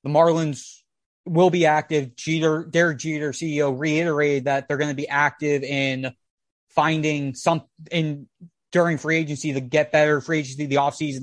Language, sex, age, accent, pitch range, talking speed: English, male, 20-39, American, 140-155 Hz, 165 wpm